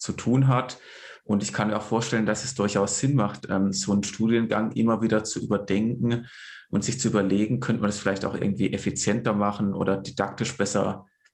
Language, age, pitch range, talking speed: German, 20-39, 100-115 Hz, 190 wpm